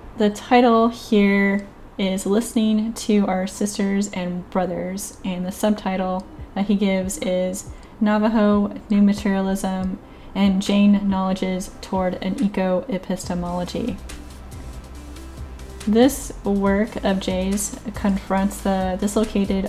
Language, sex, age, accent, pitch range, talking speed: English, female, 10-29, American, 185-210 Hz, 105 wpm